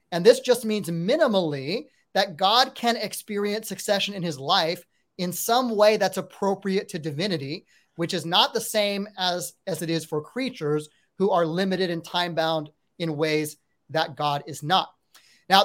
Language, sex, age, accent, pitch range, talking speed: English, male, 30-49, American, 170-205 Hz, 165 wpm